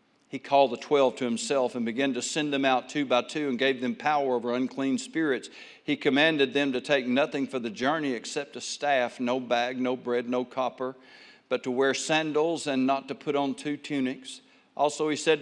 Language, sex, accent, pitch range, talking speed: English, male, American, 125-160 Hz, 210 wpm